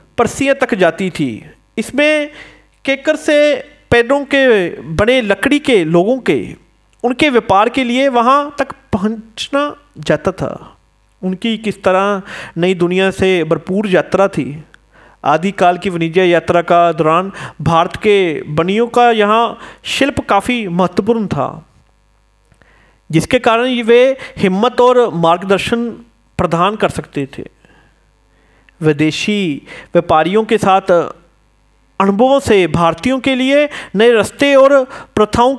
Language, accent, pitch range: Hindi, native, 175-240 Hz